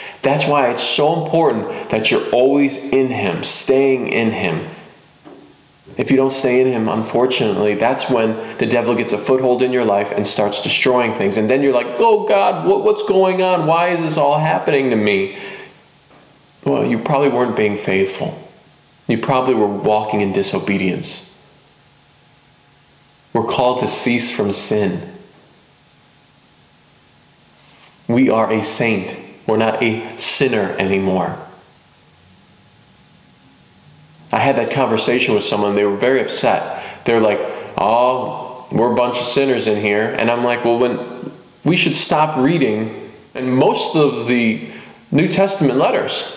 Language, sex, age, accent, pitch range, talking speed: English, male, 20-39, American, 110-140 Hz, 145 wpm